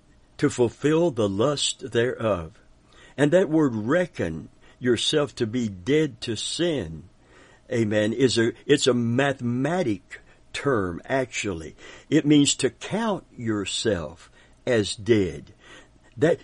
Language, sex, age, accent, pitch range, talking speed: English, male, 60-79, American, 120-170 Hz, 115 wpm